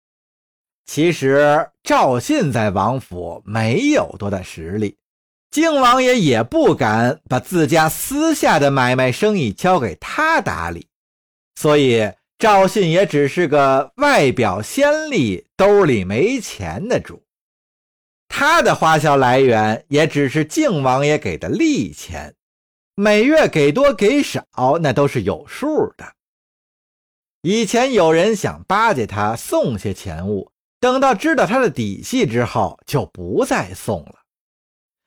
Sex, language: male, Chinese